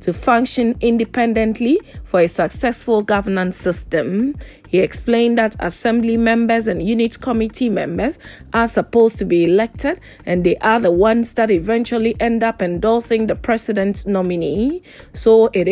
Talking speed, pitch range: 140 wpm, 185-240 Hz